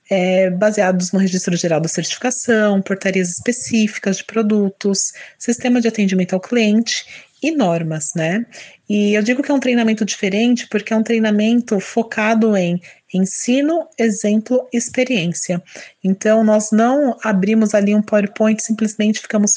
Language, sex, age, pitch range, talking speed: Portuguese, female, 30-49, 190-230 Hz, 135 wpm